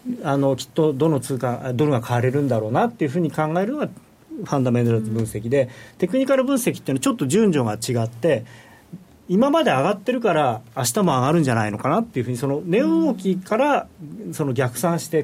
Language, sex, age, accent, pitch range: Japanese, male, 40-59, native, 120-195 Hz